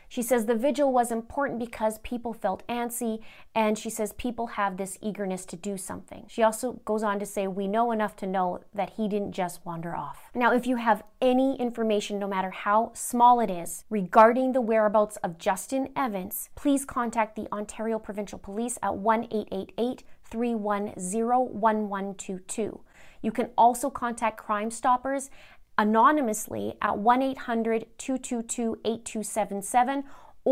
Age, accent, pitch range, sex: 30-49, American, 205-240 Hz, female